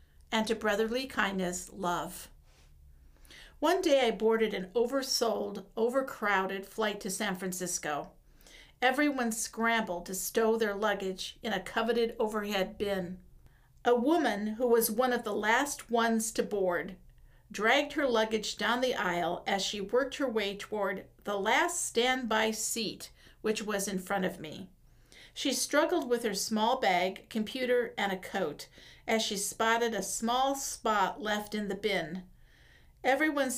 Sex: female